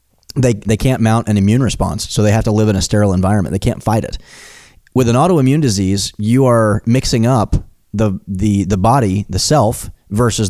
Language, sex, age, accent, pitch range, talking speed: English, male, 30-49, American, 95-115 Hz, 200 wpm